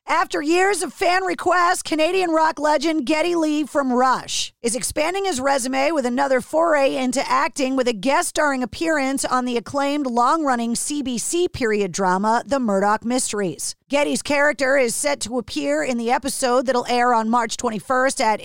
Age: 40-59